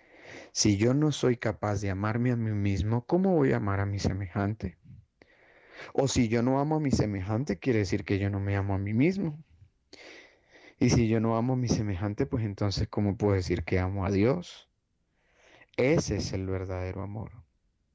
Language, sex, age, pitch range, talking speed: Spanish, male, 30-49, 95-115 Hz, 190 wpm